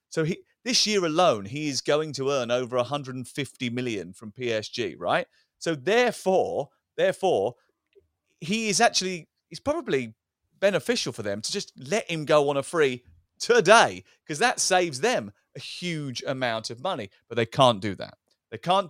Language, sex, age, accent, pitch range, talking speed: English, male, 40-59, British, 115-170 Hz, 165 wpm